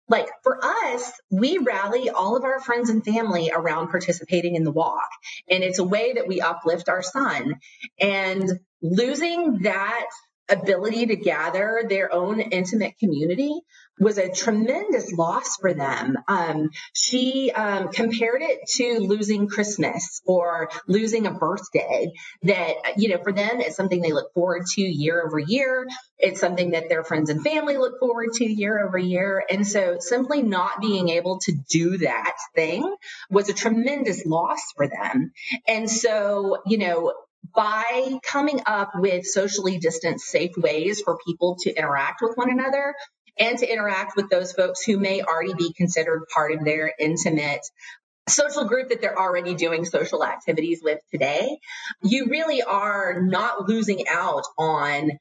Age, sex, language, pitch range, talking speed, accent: 30-49, female, English, 175-240 Hz, 160 wpm, American